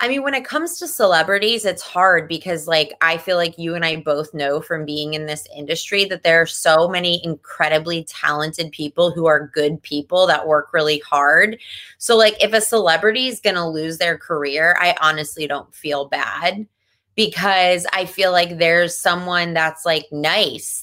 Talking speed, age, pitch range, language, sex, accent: 185 wpm, 20-39, 165-250 Hz, English, female, American